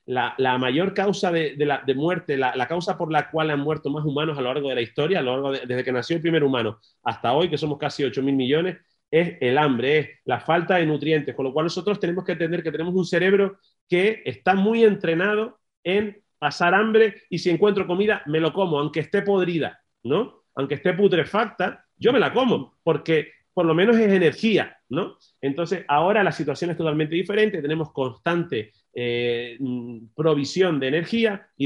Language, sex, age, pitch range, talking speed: Spanish, male, 30-49, 145-195 Hz, 205 wpm